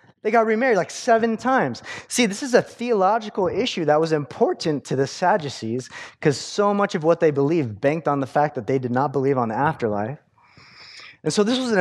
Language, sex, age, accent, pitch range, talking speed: English, male, 20-39, American, 145-205 Hz, 215 wpm